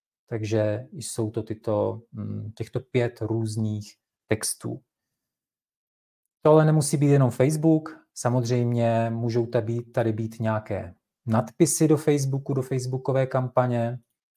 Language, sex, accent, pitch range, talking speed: Czech, male, Slovak, 115-130 Hz, 100 wpm